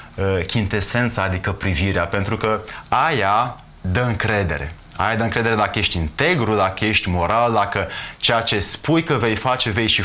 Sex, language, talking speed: male, Romanian, 155 wpm